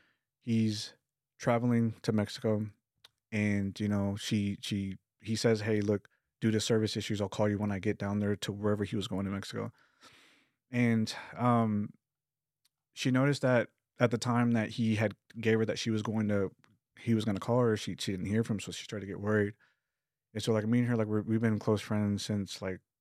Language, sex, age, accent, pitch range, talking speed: English, male, 20-39, American, 100-115 Hz, 215 wpm